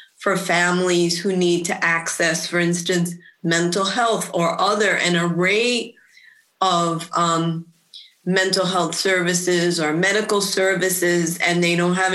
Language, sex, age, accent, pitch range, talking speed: English, female, 30-49, American, 170-190 Hz, 130 wpm